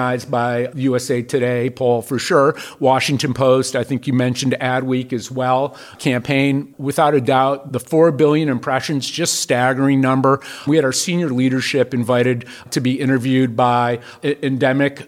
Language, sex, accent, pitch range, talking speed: English, male, American, 120-135 Hz, 150 wpm